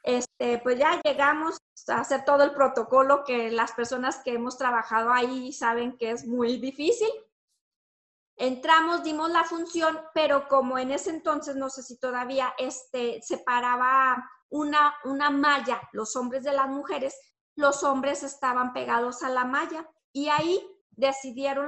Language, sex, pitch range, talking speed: Spanish, female, 255-310 Hz, 145 wpm